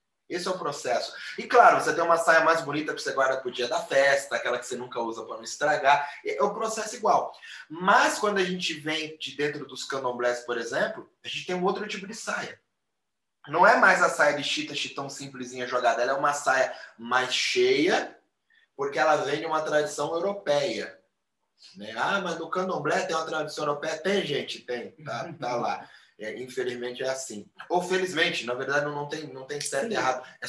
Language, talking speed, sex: Portuguese, 205 wpm, male